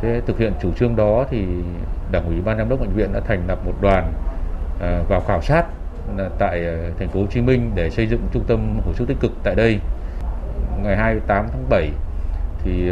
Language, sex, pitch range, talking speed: Vietnamese, male, 85-110 Hz, 205 wpm